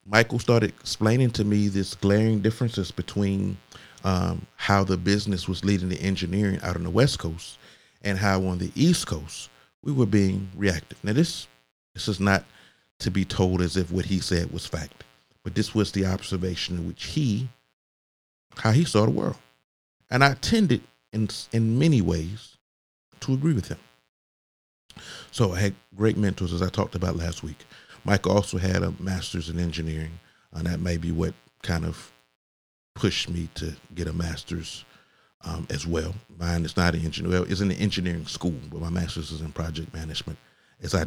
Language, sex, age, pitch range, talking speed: English, male, 40-59, 80-105 Hz, 185 wpm